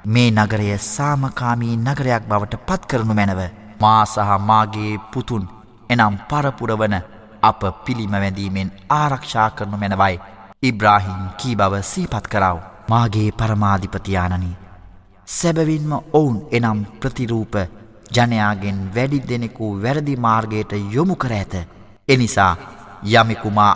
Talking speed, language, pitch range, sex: 100 wpm, Arabic, 100-120 Hz, male